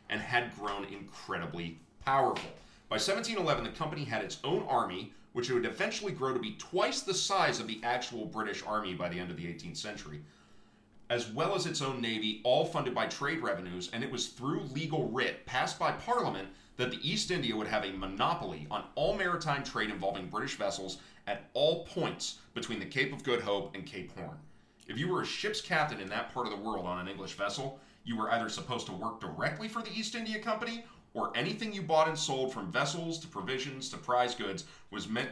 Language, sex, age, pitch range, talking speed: English, male, 30-49, 100-155 Hz, 210 wpm